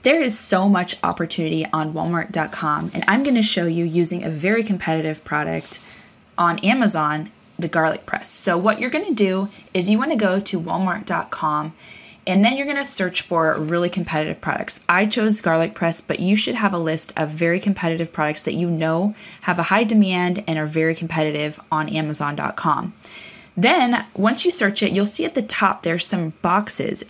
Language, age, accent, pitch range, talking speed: English, 20-39, American, 160-205 Hz, 190 wpm